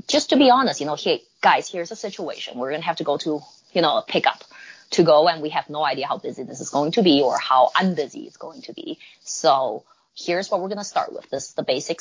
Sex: female